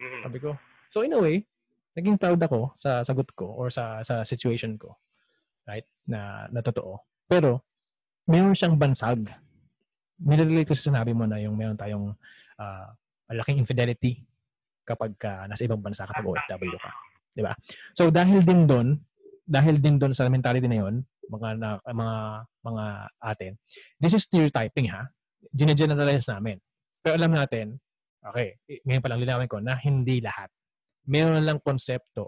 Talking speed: 160 wpm